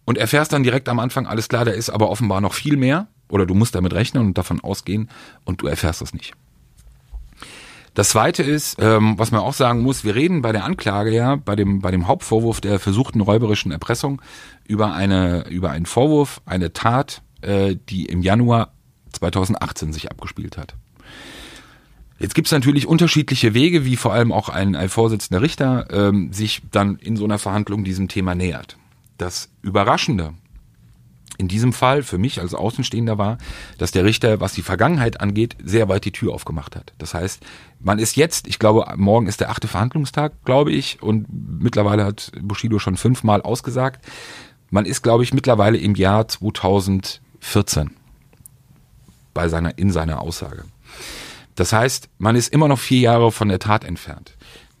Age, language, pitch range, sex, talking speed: 40-59, German, 95-125 Hz, male, 175 wpm